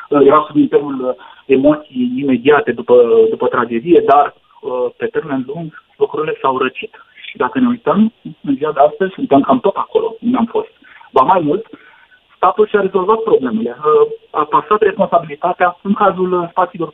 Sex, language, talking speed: male, Romanian, 150 wpm